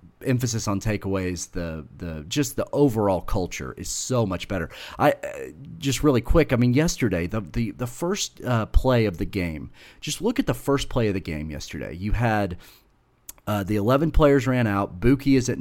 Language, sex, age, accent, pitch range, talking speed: English, male, 40-59, American, 95-125 Hz, 190 wpm